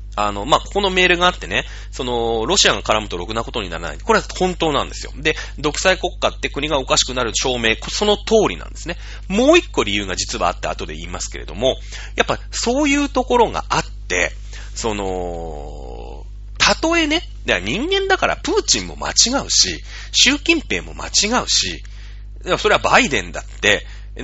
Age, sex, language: 30-49, male, Japanese